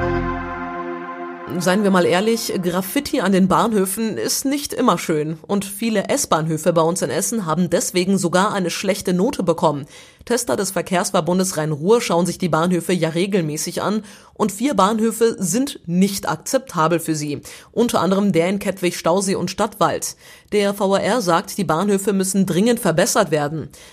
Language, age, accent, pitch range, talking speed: German, 30-49, German, 165-220 Hz, 155 wpm